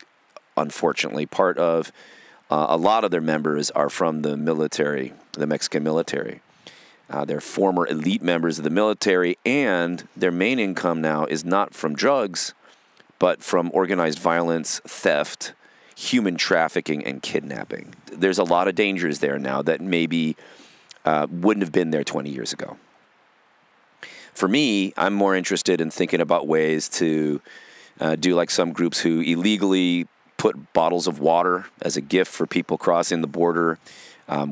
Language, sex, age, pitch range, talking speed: English, male, 30-49, 80-95 Hz, 155 wpm